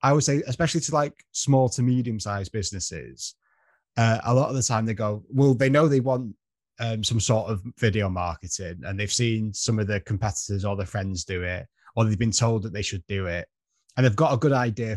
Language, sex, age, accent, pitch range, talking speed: English, male, 20-39, British, 95-120 Hz, 225 wpm